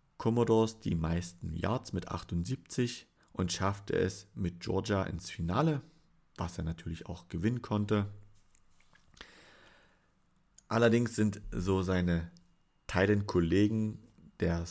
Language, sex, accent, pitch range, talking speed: German, male, German, 90-105 Hz, 100 wpm